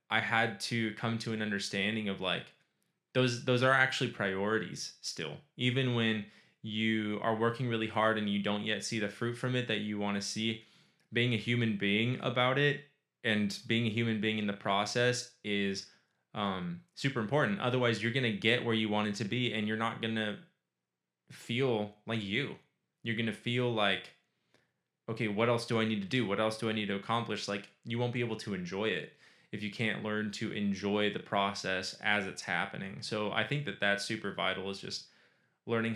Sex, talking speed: male, 205 wpm